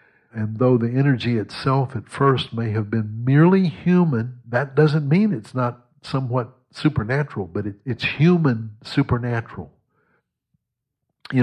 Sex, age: male, 60-79